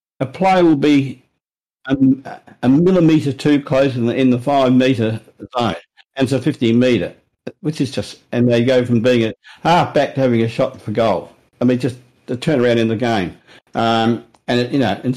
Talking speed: 185 wpm